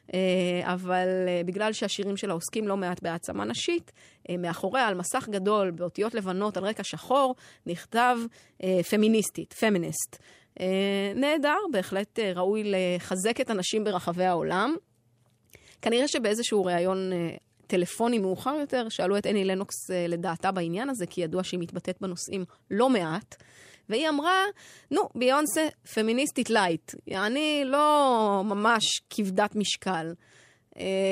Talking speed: 135 wpm